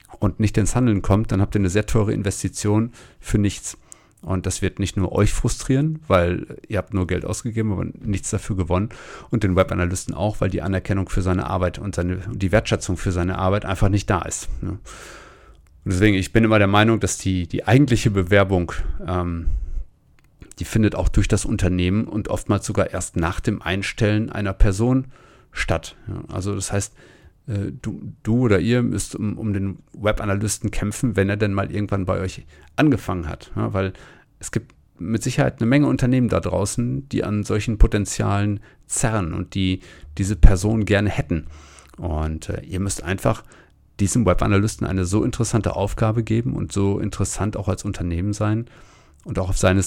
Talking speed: 180 wpm